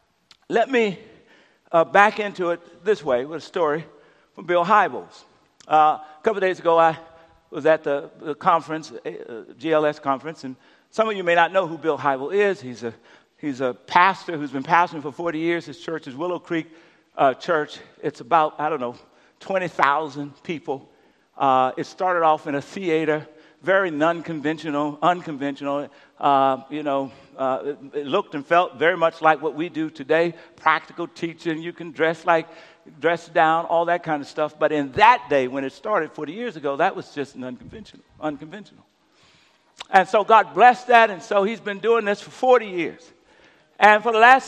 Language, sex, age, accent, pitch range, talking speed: English, male, 50-69, American, 150-195 Hz, 190 wpm